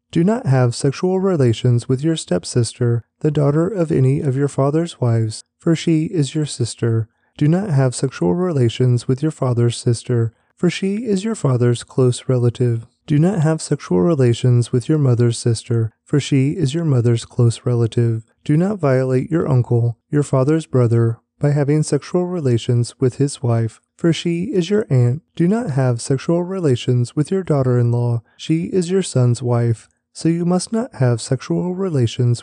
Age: 30-49